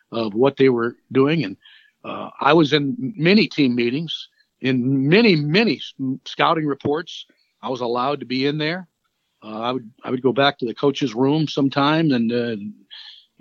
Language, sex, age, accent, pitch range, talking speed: English, male, 50-69, American, 135-170 Hz, 175 wpm